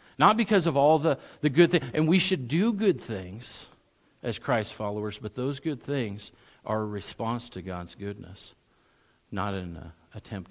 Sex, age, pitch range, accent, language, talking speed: male, 50-69, 100-130 Hz, American, English, 170 wpm